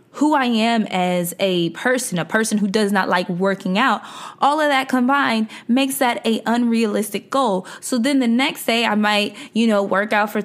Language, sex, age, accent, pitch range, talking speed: English, female, 20-39, American, 200-255 Hz, 200 wpm